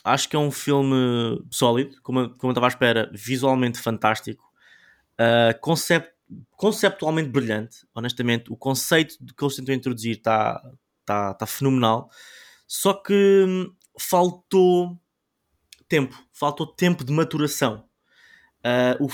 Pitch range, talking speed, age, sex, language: 125-155 Hz, 115 wpm, 20-39, male, Portuguese